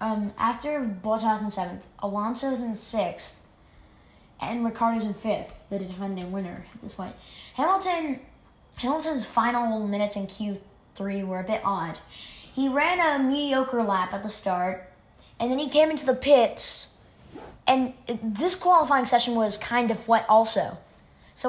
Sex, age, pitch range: female, 20-39, 195-250 Hz